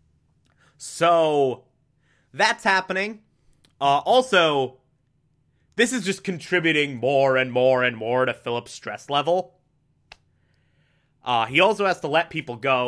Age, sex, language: 30-49, male, English